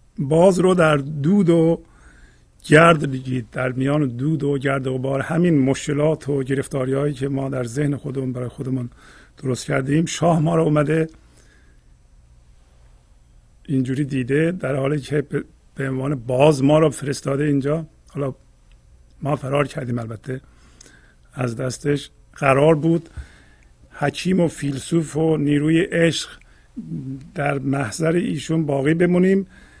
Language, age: Persian, 50-69